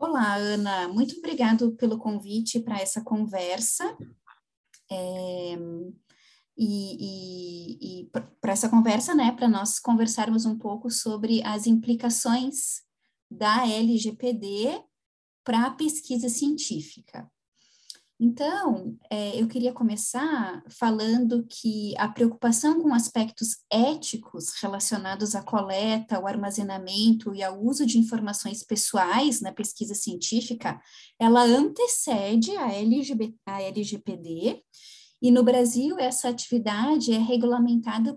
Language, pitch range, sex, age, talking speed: Portuguese, 215-265 Hz, female, 10-29, 105 wpm